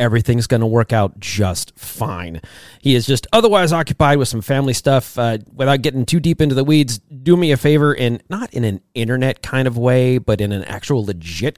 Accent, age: American, 30-49